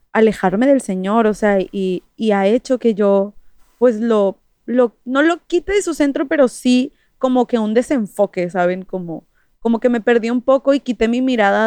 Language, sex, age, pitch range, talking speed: English, female, 20-39, 205-260 Hz, 195 wpm